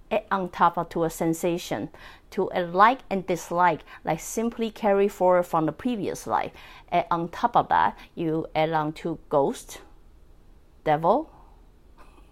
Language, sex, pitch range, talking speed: English, female, 160-200 Hz, 150 wpm